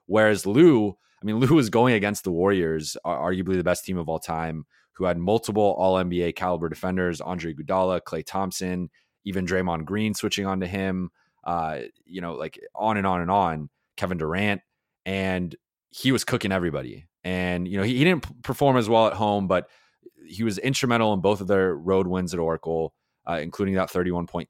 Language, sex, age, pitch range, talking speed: English, male, 20-39, 85-105 Hz, 185 wpm